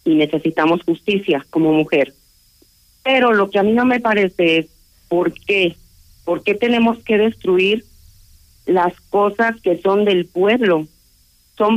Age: 40-59